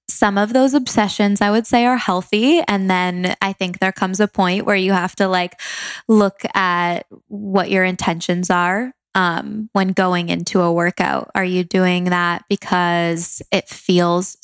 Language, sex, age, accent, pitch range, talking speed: English, female, 20-39, American, 175-205 Hz, 170 wpm